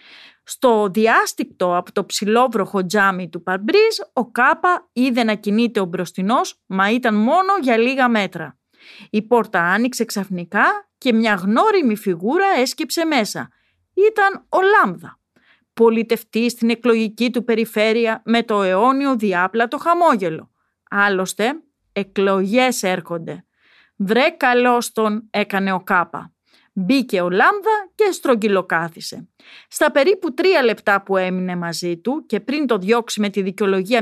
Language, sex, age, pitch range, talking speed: Greek, female, 30-49, 200-270 Hz, 130 wpm